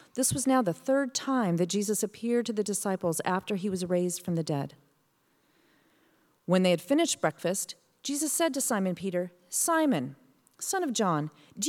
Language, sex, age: English, female, 40-59